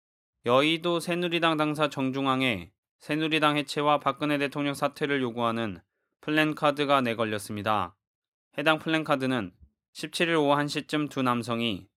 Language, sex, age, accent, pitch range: Korean, male, 20-39, native, 115-150 Hz